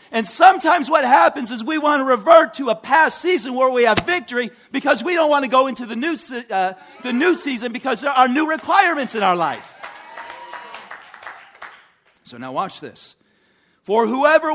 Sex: male